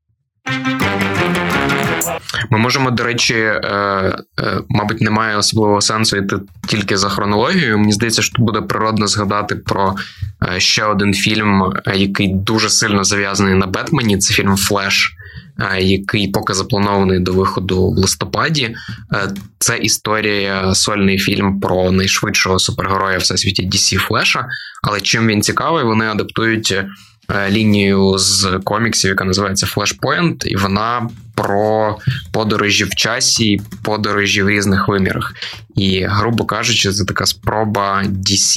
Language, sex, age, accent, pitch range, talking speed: Ukrainian, male, 20-39, native, 95-110 Hz, 125 wpm